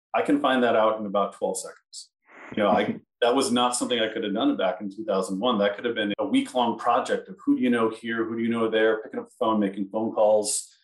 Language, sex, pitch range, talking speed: English, male, 100-150 Hz, 260 wpm